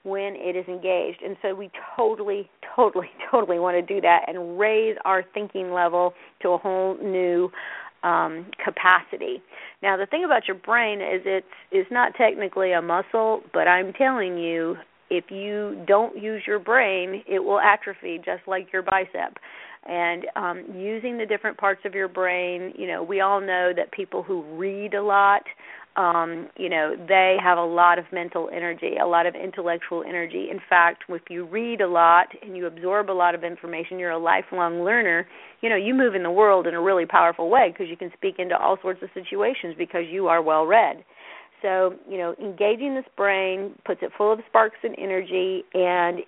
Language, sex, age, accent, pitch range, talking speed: English, female, 40-59, American, 175-205 Hz, 190 wpm